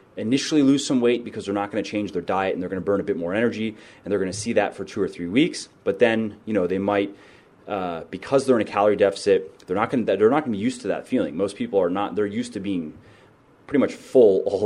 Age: 30-49